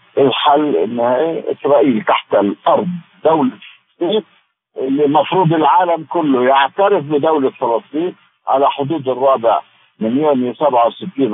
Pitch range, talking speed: 125-185 Hz, 100 wpm